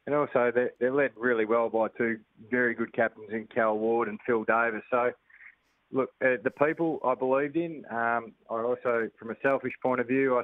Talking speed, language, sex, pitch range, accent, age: 205 wpm, English, male, 110-125 Hz, Australian, 20-39